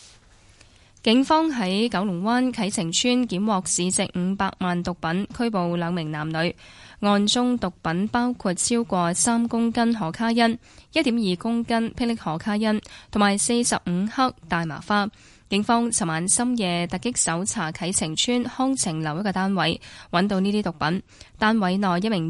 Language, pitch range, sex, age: Chinese, 170-230 Hz, female, 10-29